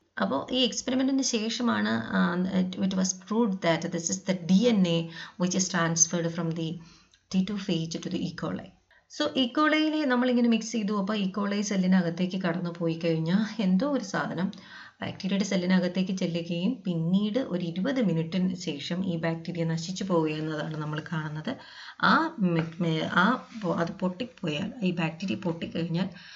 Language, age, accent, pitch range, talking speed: English, 30-49, Indian, 170-215 Hz, 90 wpm